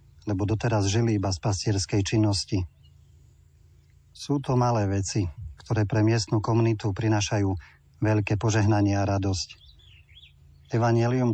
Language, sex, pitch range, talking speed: Slovak, male, 95-110 Hz, 110 wpm